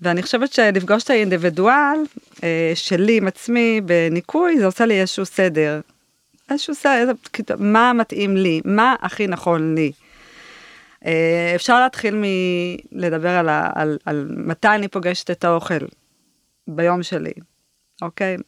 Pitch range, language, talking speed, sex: 165-210 Hz, Hebrew, 135 wpm, female